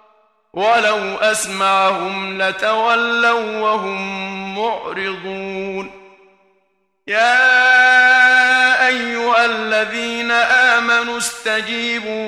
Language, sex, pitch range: Arabic, male, 195-235 Hz